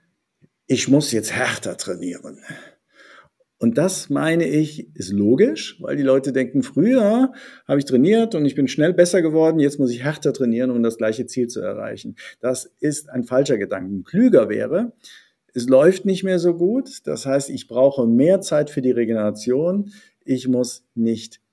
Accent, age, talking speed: German, 50-69, 170 wpm